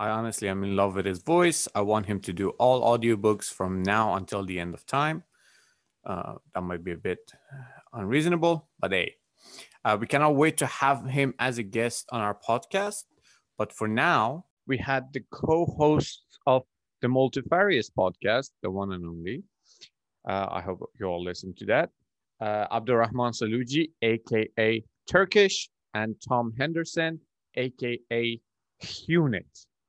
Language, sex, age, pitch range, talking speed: English, male, 30-49, 100-135 Hz, 155 wpm